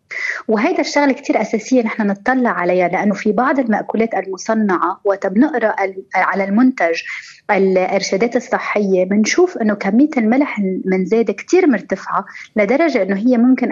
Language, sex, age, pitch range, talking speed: Arabic, female, 30-49, 195-270 Hz, 125 wpm